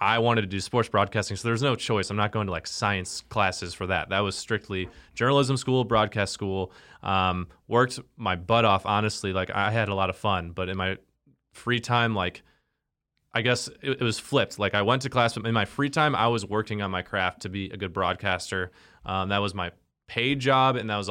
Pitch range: 95-120 Hz